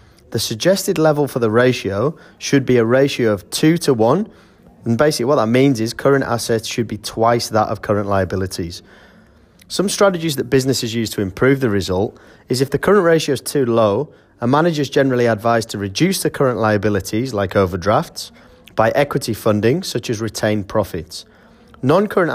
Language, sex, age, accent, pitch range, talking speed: English, male, 30-49, British, 105-135 Hz, 175 wpm